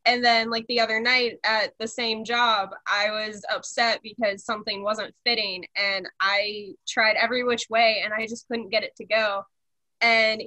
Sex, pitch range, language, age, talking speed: female, 210-245 Hz, English, 10-29, 185 wpm